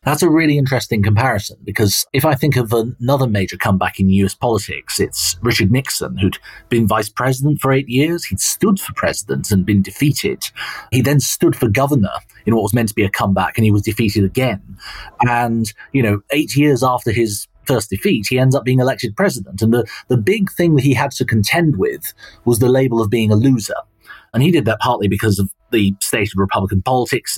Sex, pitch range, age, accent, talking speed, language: male, 105-140 Hz, 30-49, British, 210 wpm, English